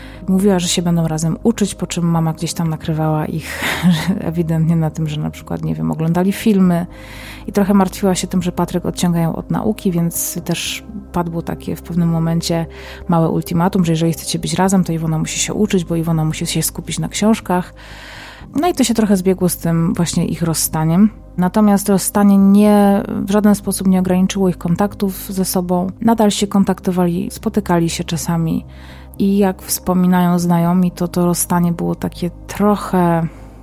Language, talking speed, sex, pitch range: Polish, 180 wpm, female, 165-195 Hz